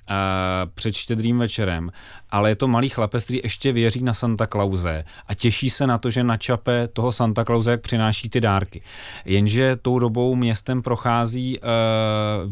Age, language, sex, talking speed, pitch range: 30-49, Czech, male, 165 wpm, 105-120 Hz